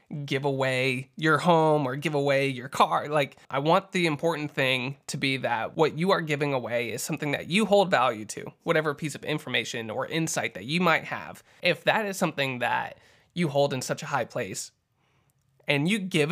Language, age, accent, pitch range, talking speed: English, 20-39, American, 135-165 Hz, 200 wpm